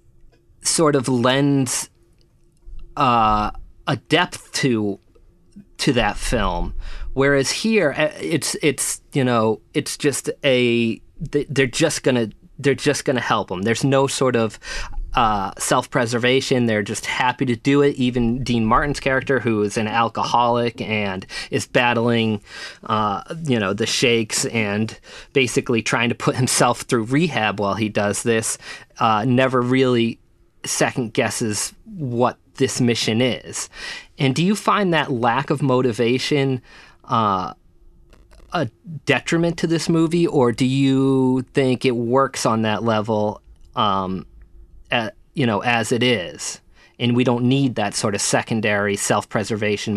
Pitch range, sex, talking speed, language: 110-135 Hz, male, 135 wpm, English